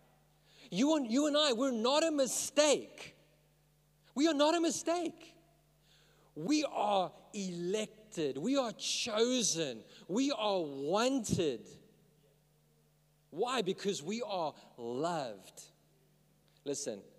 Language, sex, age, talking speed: English, male, 40-59, 100 wpm